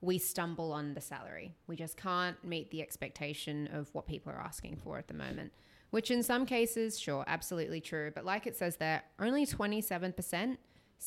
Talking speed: 185 wpm